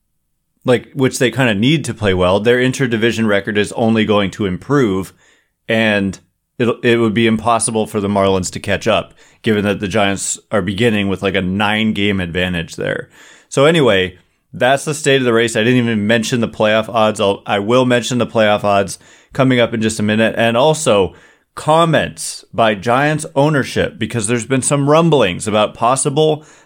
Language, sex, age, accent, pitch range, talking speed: English, male, 30-49, American, 105-135 Hz, 185 wpm